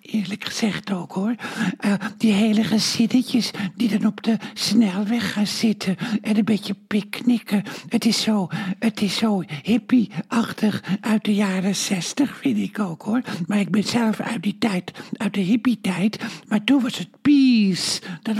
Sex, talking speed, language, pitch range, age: male, 165 wpm, Dutch, 205-255 Hz, 60-79